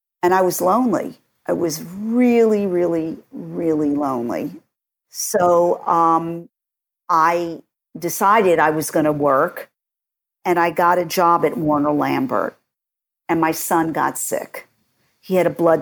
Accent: American